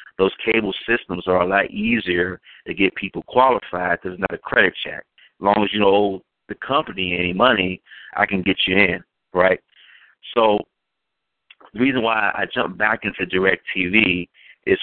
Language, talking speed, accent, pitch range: English, 180 wpm, American, 90-105 Hz